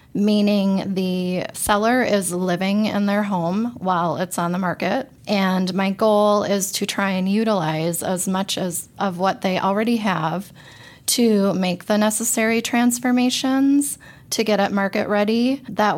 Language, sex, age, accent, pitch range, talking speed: English, female, 20-39, American, 185-215 Hz, 150 wpm